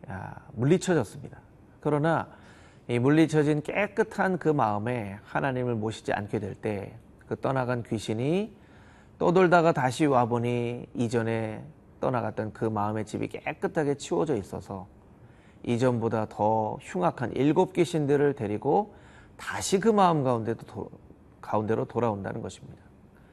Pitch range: 110-150 Hz